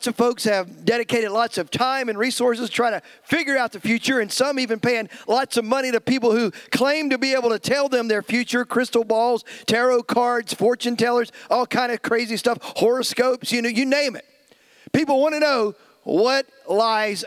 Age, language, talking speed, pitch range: 50-69, English, 200 wpm, 230-265 Hz